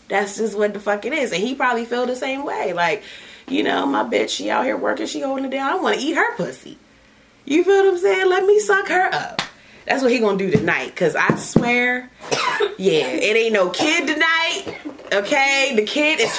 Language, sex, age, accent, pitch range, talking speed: English, female, 20-39, American, 210-295 Hz, 225 wpm